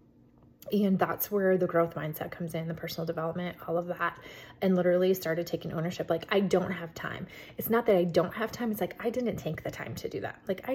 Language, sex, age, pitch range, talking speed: English, female, 20-39, 170-215 Hz, 240 wpm